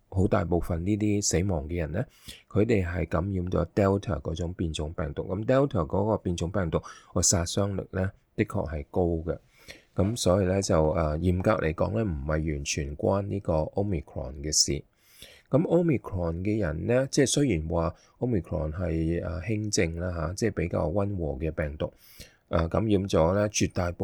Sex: male